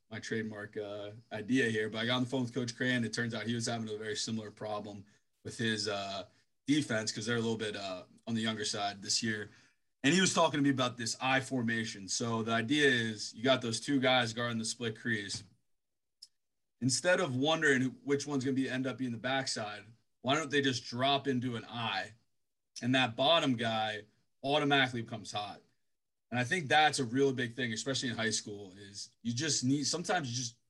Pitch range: 110-135 Hz